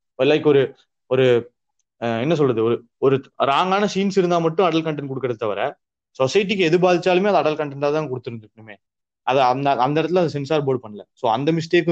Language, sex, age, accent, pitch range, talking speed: Tamil, male, 20-39, native, 125-170 Hz, 150 wpm